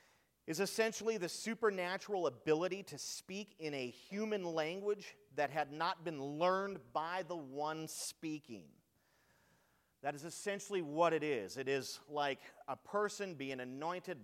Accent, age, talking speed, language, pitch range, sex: American, 40-59, 140 wpm, English, 120-165 Hz, male